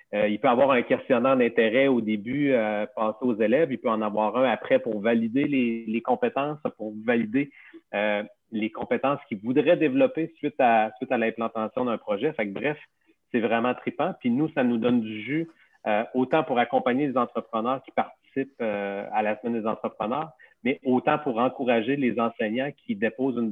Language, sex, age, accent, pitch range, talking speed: French, male, 40-59, Canadian, 110-145 Hz, 190 wpm